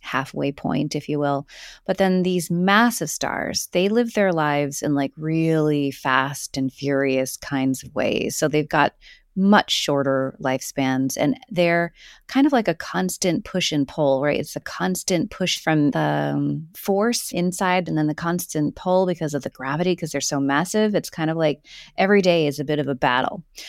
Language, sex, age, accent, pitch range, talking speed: English, female, 30-49, American, 145-180 Hz, 185 wpm